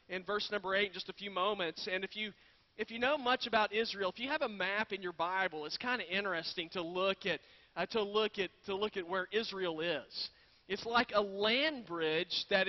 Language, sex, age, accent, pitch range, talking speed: English, male, 40-59, American, 190-235 Hz, 230 wpm